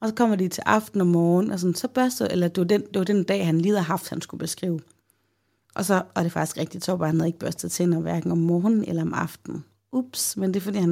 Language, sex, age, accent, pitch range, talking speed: Danish, female, 30-49, native, 160-190 Hz, 295 wpm